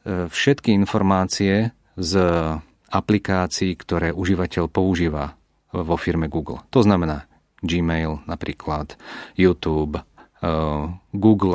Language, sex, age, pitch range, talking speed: Czech, male, 40-59, 85-105 Hz, 85 wpm